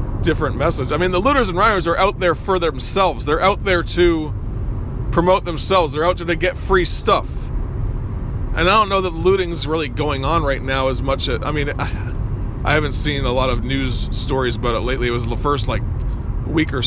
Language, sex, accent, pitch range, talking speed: English, male, American, 110-170 Hz, 215 wpm